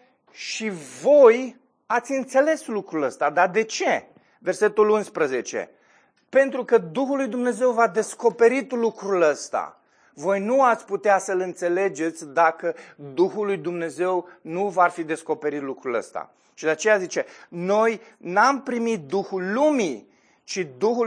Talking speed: 135 wpm